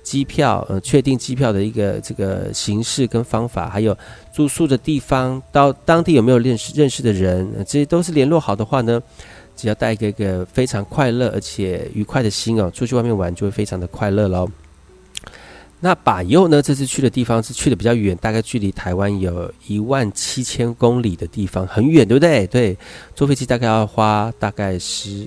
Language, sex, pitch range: Chinese, male, 95-125 Hz